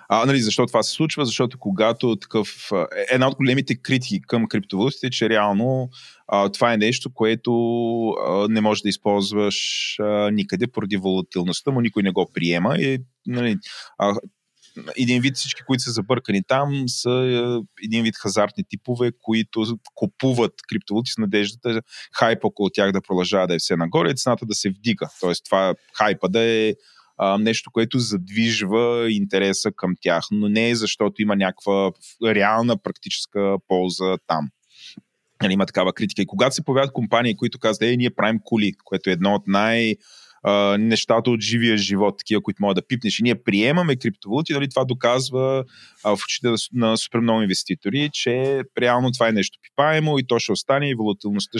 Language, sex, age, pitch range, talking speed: Bulgarian, male, 30-49, 100-125 Hz, 170 wpm